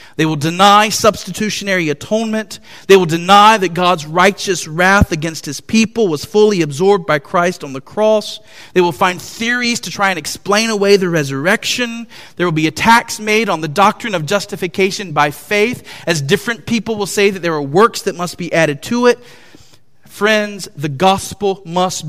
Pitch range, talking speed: 145-205 Hz, 175 wpm